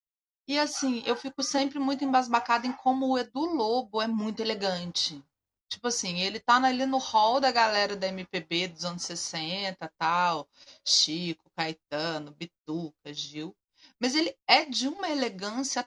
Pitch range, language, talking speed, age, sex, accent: 175-255 Hz, Portuguese, 150 wpm, 30-49, female, Brazilian